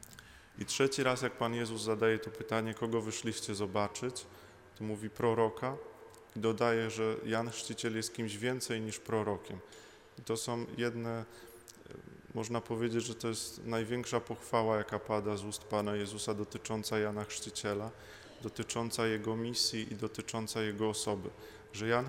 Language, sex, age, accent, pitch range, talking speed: Polish, male, 20-39, native, 110-120 Hz, 145 wpm